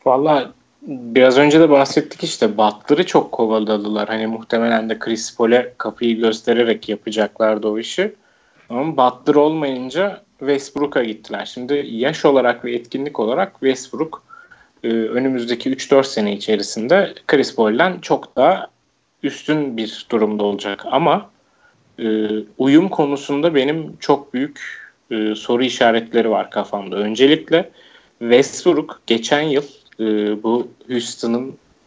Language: Turkish